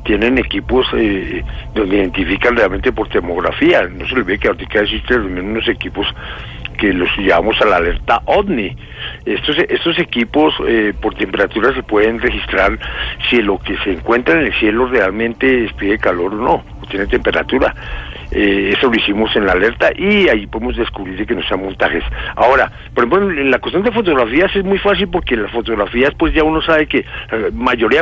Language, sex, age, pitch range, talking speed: English, male, 60-79, 105-135 Hz, 180 wpm